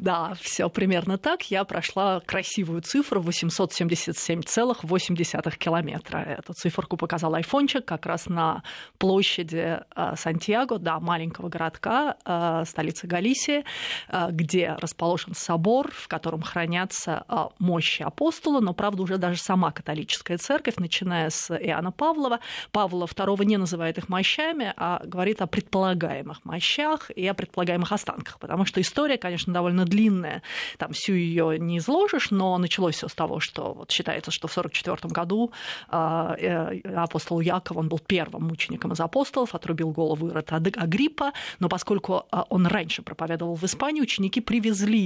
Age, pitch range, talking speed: 30-49, 165-210 Hz, 135 wpm